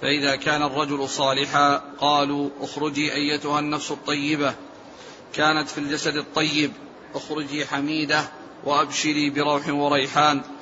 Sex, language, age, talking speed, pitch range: male, Arabic, 40-59, 100 wpm, 145-155 Hz